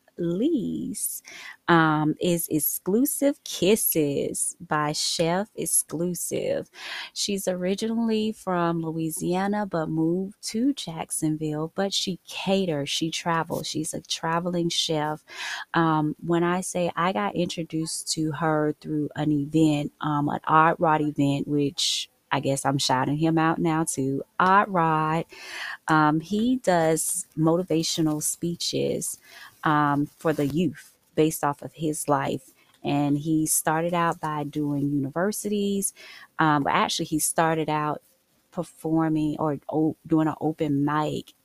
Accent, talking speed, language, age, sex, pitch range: American, 125 wpm, English, 20-39, female, 150-175 Hz